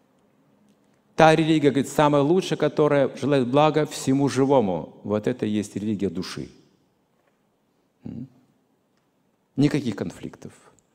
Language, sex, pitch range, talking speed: Russian, male, 105-160 Hz, 100 wpm